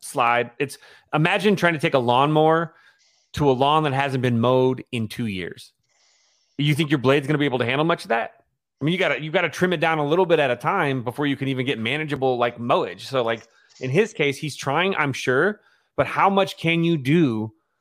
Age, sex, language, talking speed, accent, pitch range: 30-49, male, English, 235 wpm, American, 125-160 Hz